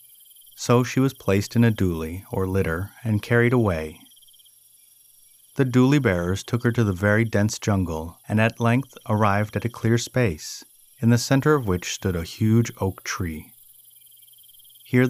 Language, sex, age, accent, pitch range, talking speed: English, male, 30-49, American, 95-125 Hz, 160 wpm